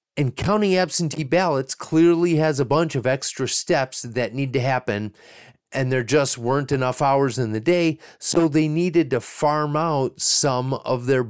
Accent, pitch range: American, 125-160 Hz